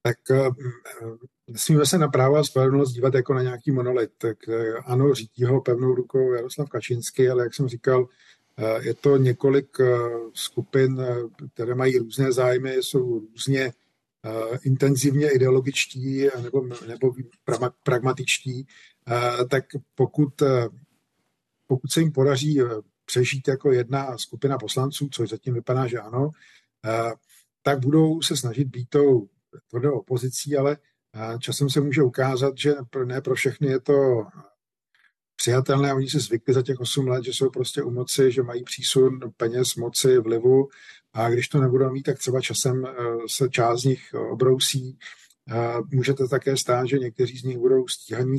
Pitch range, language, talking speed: 120-135 Hz, Czech, 140 wpm